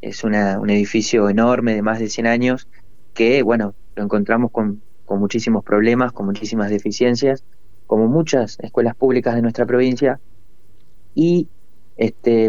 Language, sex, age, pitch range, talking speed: Spanish, male, 30-49, 105-120 Hz, 145 wpm